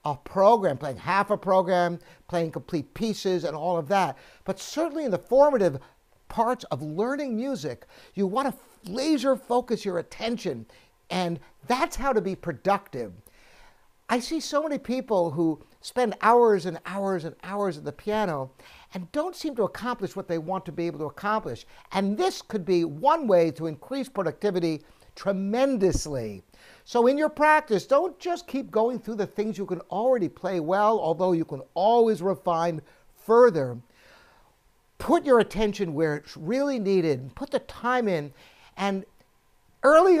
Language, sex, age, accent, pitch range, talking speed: English, male, 60-79, American, 170-250 Hz, 160 wpm